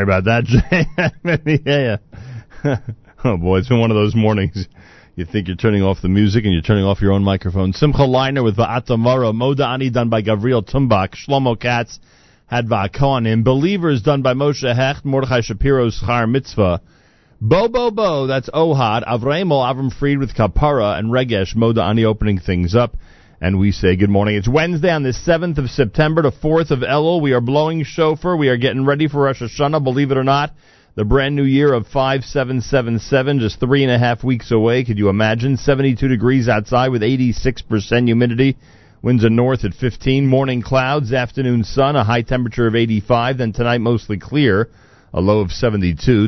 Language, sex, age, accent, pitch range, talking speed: English, male, 40-59, American, 110-135 Hz, 190 wpm